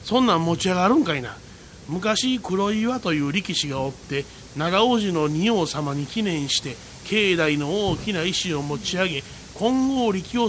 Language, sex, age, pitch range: Japanese, male, 40-59, 155-225 Hz